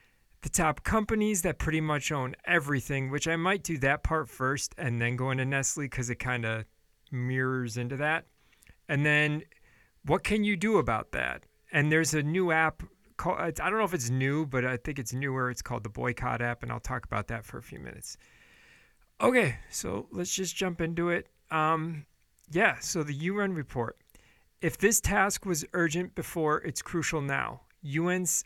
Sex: male